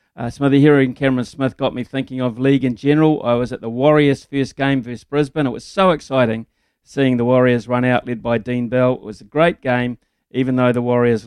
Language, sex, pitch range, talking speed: English, male, 120-135 Hz, 240 wpm